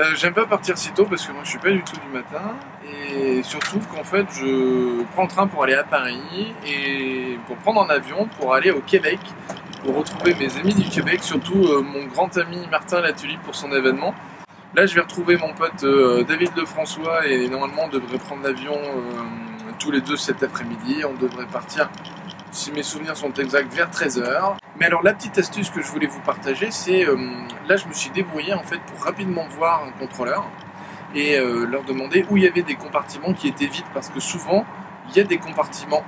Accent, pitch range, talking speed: French, 135-190 Hz, 210 wpm